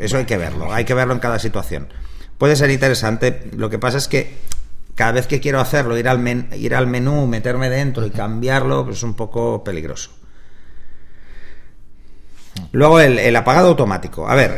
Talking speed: 185 wpm